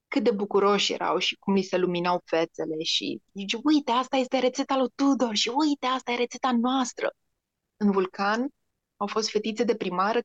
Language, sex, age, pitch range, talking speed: Romanian, female, 20-39, 195-235 Hz, 175 wpm